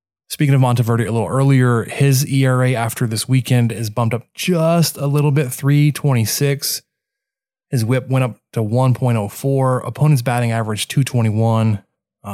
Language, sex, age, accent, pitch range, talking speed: English, male, 20-39, American, 115-155 Hz, 140 wpm